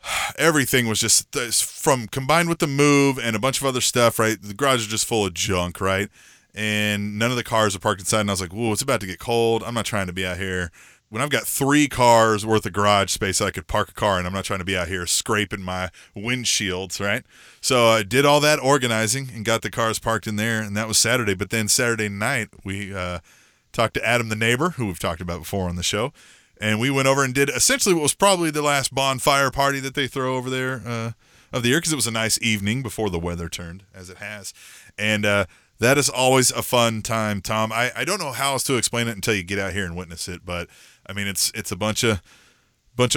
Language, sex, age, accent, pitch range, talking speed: English, male, 20-39, American, 100-130 Hz, 255 wpm